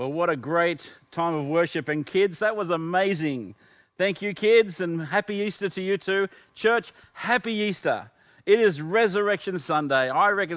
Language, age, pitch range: English, 40-59, 145-190 Hz